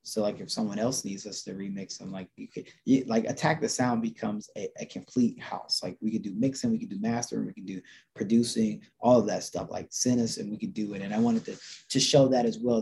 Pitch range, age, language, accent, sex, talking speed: 100-145 Hz, 20-39, English, American, male, 260 wpm